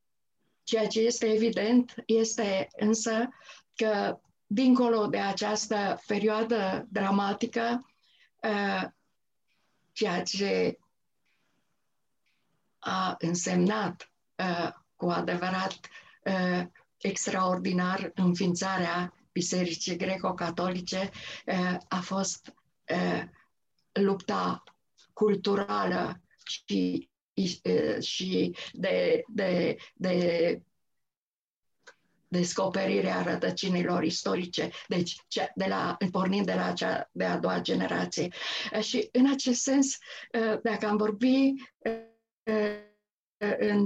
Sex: female